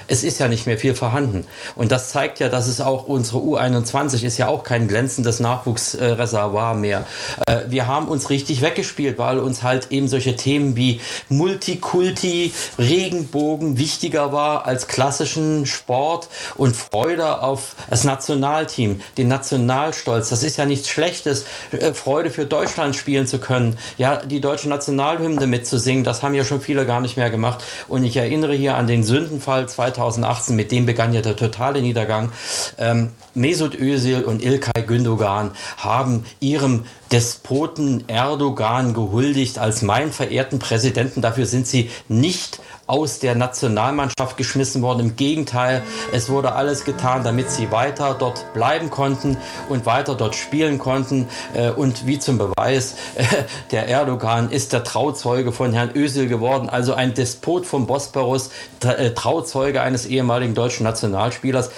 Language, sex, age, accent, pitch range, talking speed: German, male, 40-59, German, 120-140 Hz, 150 wpm